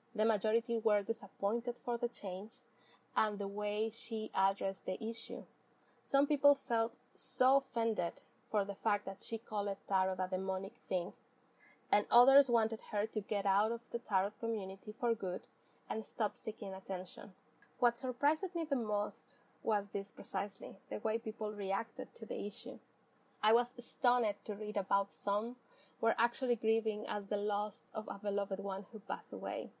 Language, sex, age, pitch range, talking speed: English, female, 20-39, 205-245 Hz, 165 wpm